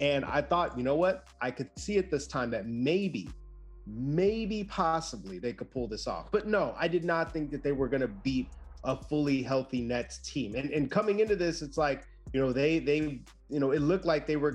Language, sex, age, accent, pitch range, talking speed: English, male, 30-49, American, 125-155 Hz, 230 wpm